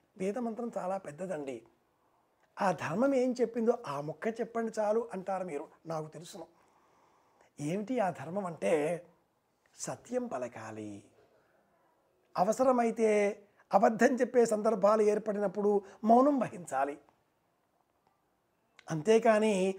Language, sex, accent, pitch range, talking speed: Telugu, male, native, 185-250 Hz, 90 wpm